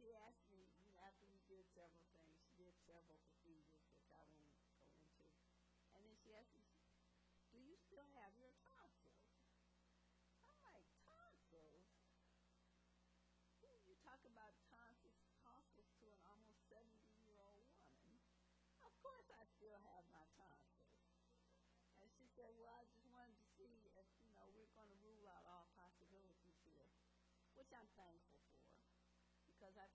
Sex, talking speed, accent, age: female, 150 wpm, American, 60-79